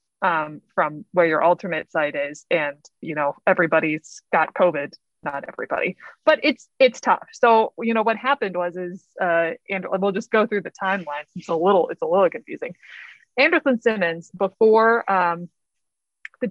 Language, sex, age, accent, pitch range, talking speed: English, female, 20-39, American, 170-210 Hz, 165 wpm